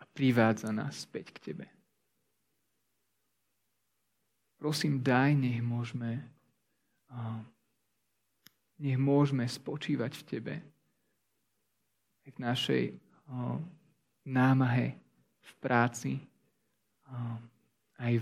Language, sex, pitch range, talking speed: Slovak, male, 110-140 Hz, 70 wpm